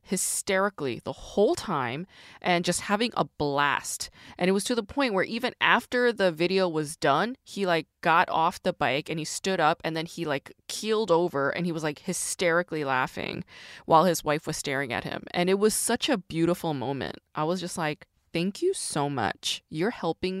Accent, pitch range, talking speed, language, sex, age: American, 160-220 Hz, 200 wpm, English, female, 20-39